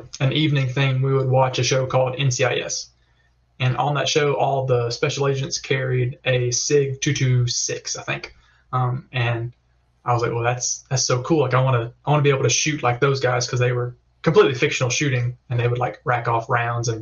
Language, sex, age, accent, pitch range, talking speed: English, male, 20-39, American, 120-145 Hz, 220 wpm